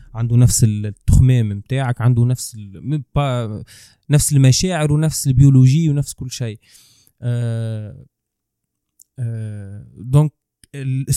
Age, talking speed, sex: 20-39, 90 wpm, male